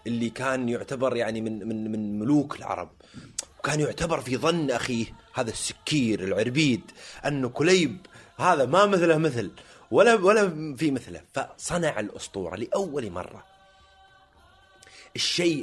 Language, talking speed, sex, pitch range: Arabic, 125 wpm, male, 115-180 Hz